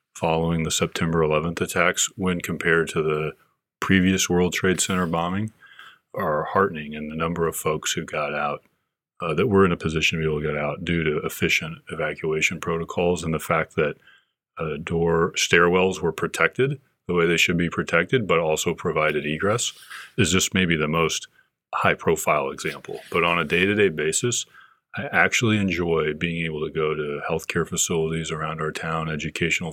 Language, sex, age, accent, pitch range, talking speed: English, male, 30-49, American, 80-90 Hz, 180 wpm